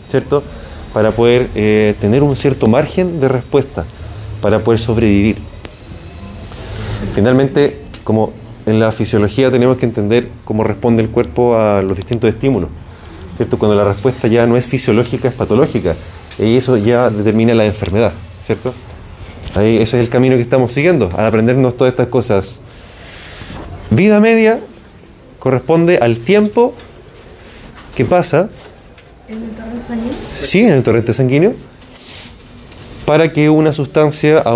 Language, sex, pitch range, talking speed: Spanish, male, 105-140 Hz, 135 wpm